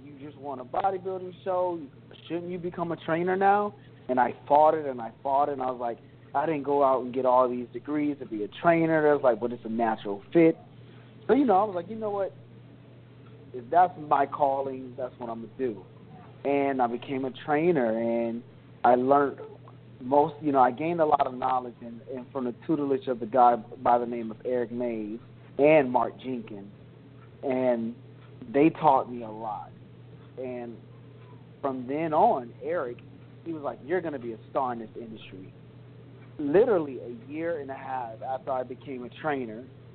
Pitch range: 125-145 Hz